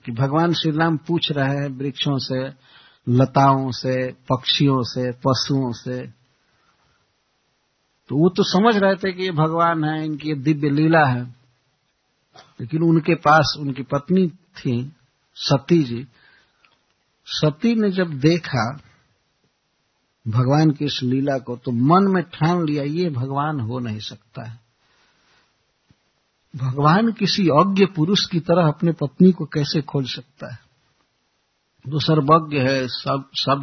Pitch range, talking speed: 130-165 Hz, 135 wpm